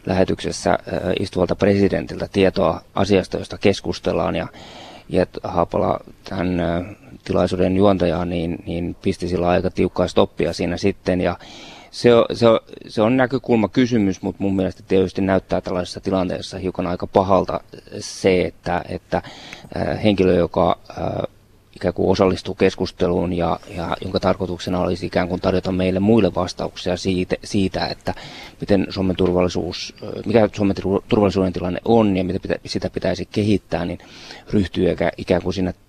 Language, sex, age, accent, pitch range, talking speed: Finnish, male, 20-39, native, 90-100 Hz, 125 wpm